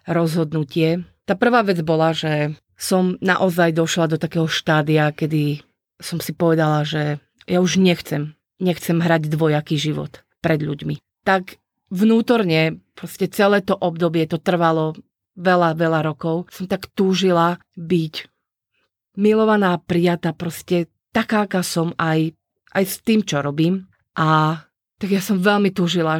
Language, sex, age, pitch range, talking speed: Slovak, female, 40-59, 155-180 Hz, 135 wpm